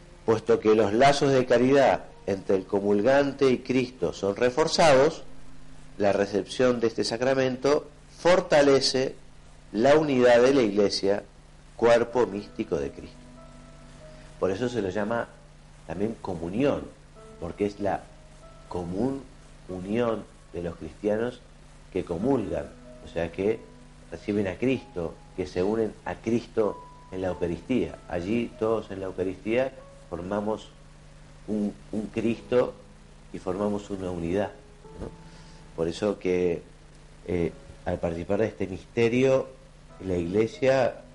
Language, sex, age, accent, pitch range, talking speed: Spanish, male, 50-69, Argentinian, 85-120 Hz, 120 wpm